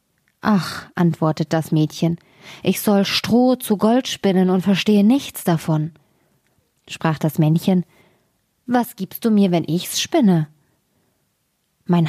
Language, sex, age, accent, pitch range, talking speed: German, female, 20-39, German, 160-205 Hz, 125 wpm